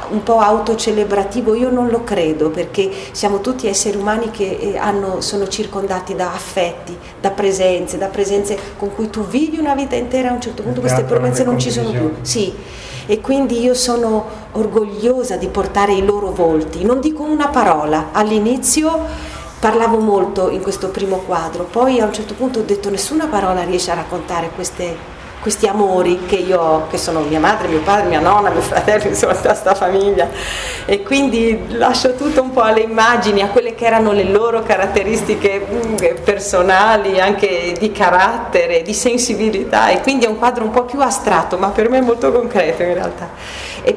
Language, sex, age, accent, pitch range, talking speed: Italian, female, 40-59, native, 170-220 Hz, 180 wpm